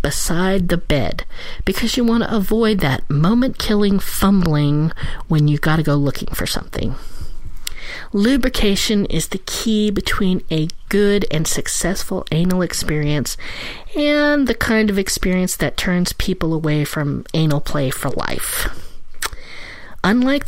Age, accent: 40-59, American